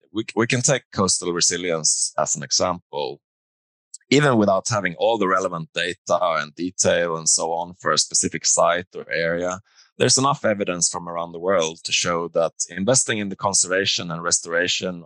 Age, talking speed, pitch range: 20-39, 170 wpm, 80-95 Hz